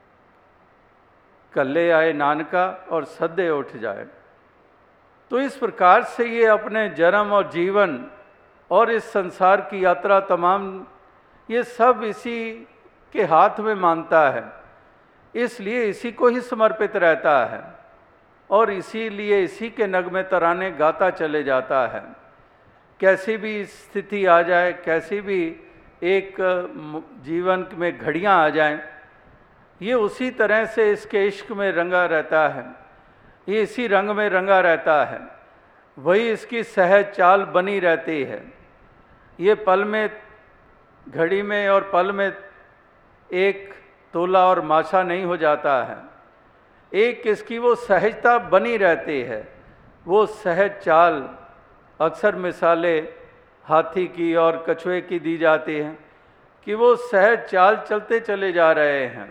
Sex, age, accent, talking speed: male, 50-69, native, 130 wpm